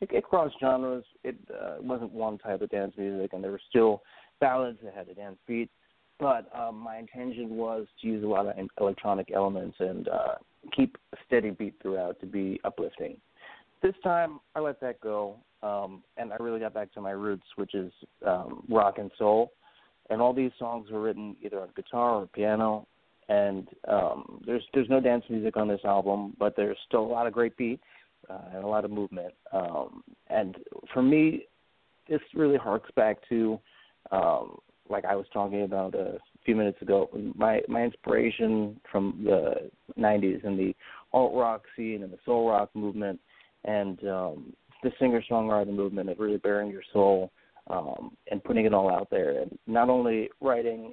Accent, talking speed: American, 180 wpm